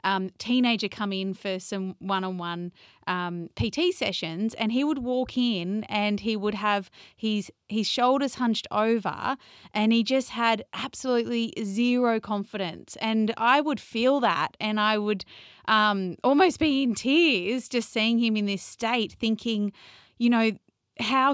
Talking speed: 150 wpm